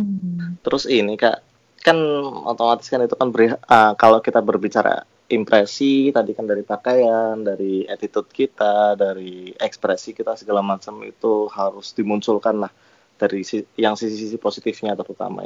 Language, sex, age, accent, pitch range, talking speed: Indonesian, male, 20-39, native, 110-140 Hz, 140 wpm